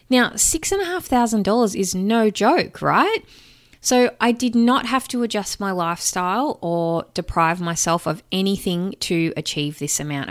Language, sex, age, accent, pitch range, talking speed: English, female, 20-39, Australian, 155-215 Hz, 170 wpm